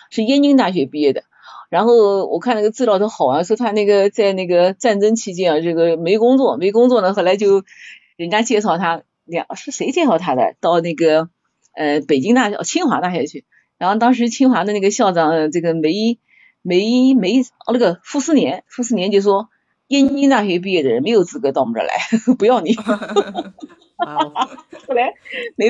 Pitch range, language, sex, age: 175-255 Hz, Chinese, female, 30-49